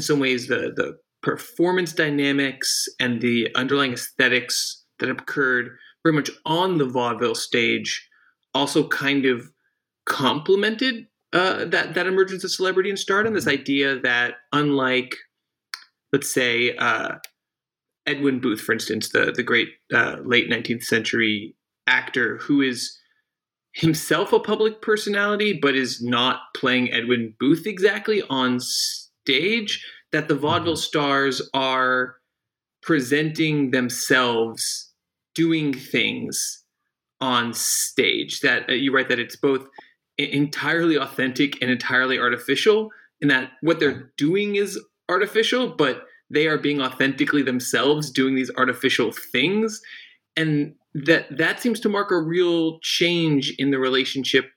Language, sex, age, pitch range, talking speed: English, male, 30-49, 130-180 Hz, 130 wpm